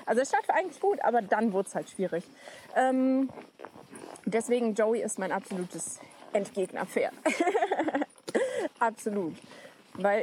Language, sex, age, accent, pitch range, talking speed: German, female, 20-39, German, 200-275 Hz, 115 wpm